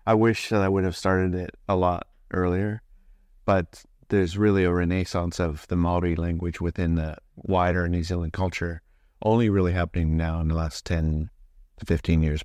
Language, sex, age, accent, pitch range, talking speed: English, male, 30-49, American, 80-95 Hz, 180 wpm